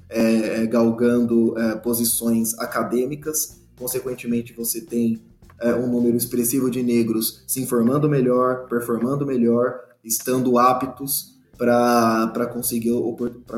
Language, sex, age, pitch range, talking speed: Portuguese, male, 20-39, 115-145 Hz, 100 wpm